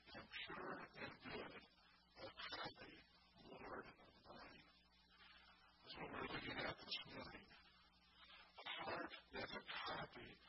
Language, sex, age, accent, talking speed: English, female, 40-59, American, 125 wpm